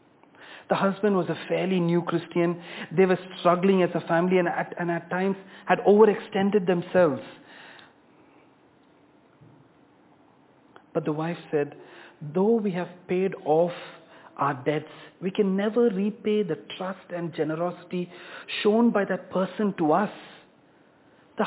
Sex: male